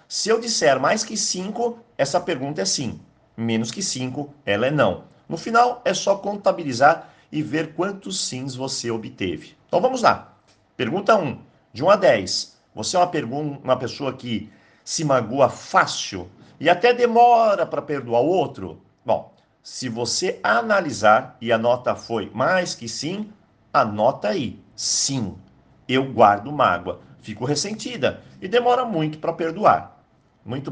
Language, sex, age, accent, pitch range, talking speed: Portuguese, male, 50-69, Brazilian, 115-185 Hz, 155 wpm